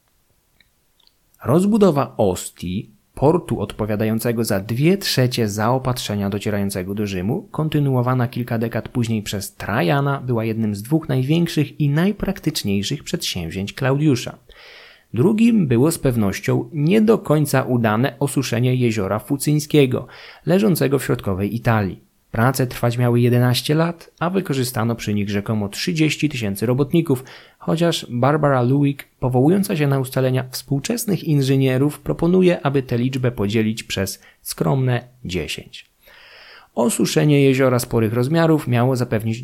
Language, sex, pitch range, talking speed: Polish, male, 110-145 Hz, 115 wpm